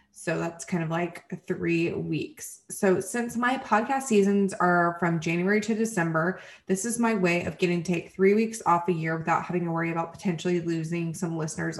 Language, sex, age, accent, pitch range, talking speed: English, female, 20-39, American, 170-220 Hz, 200 wpm